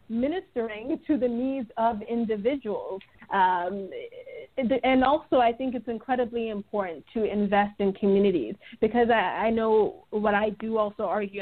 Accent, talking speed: American, 135 wpm